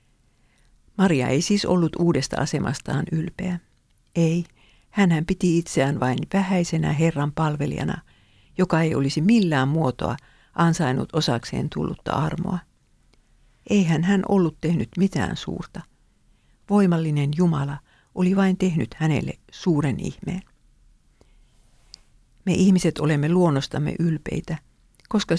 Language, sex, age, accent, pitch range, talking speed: English, female, 50-69, Finnish, 150-180 Hz, 105 wpm